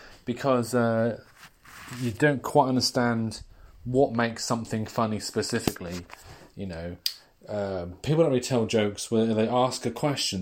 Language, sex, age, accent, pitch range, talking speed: English, male, 30-49, British, 105-125 Hz, 140 wpm